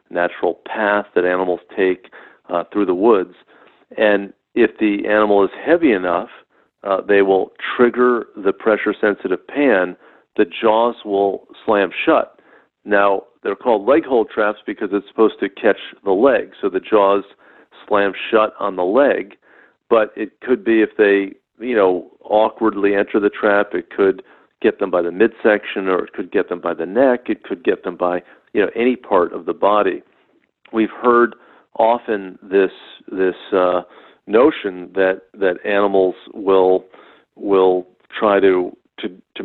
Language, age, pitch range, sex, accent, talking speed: English, 50-69, 95-110 Hz, male, American, 155 wpm